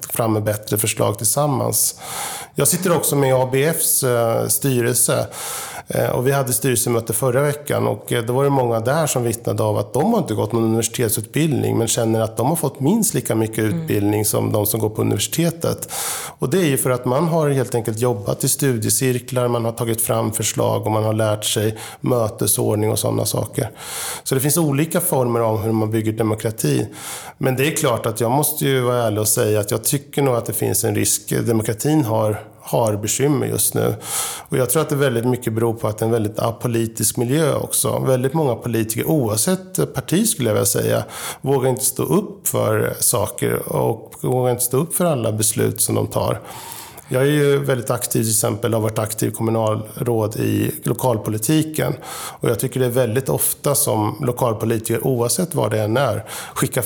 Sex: male